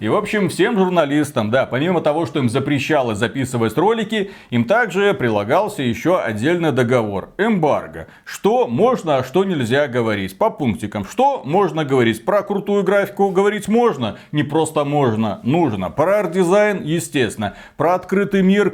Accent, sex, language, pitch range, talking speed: native, male, Russian, 130-180 Hz, 145 wpm